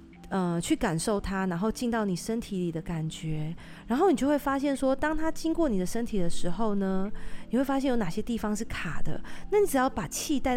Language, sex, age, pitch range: Chinese, female, 30-49, 180-235 Hz